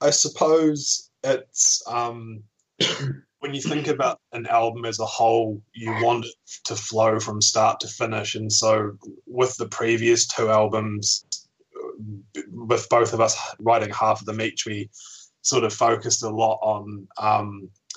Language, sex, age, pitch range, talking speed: English, male, 20-39, 105-115 Hz, 155 wpm